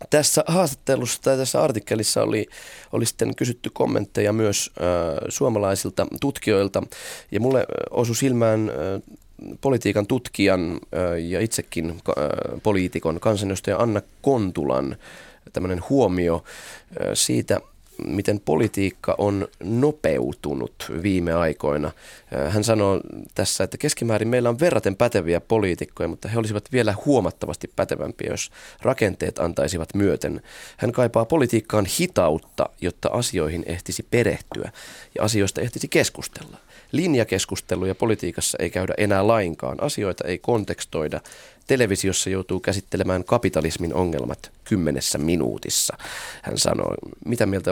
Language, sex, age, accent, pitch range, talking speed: Finnish, male, 20-39, native, 90-115 Hz, 110 wpm